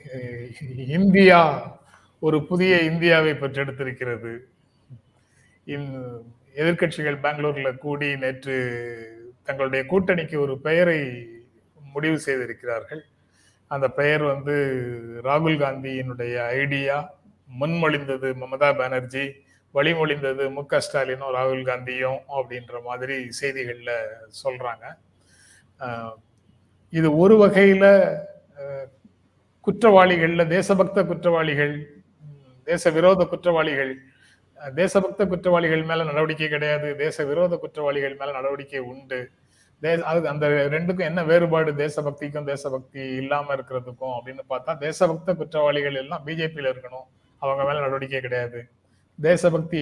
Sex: male